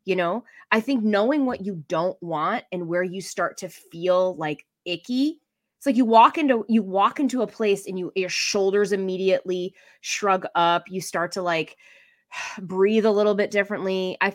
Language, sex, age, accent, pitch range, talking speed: English, female, 20-39, American, 160-200 Hz, 185 wpm